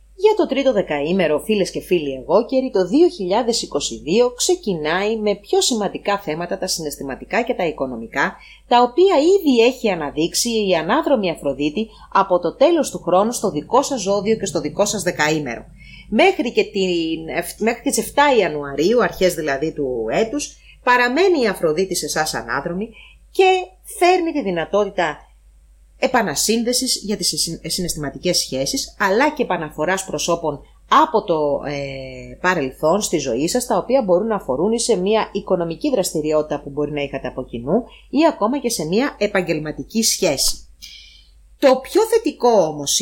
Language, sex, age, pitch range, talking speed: English, female, 30-49, 155-240 Hz, 145 wpm